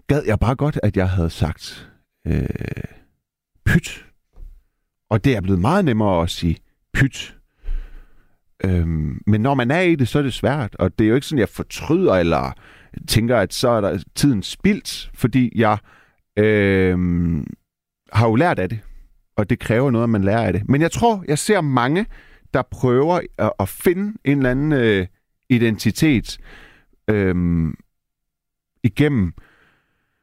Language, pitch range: Danish, 100-140 Hz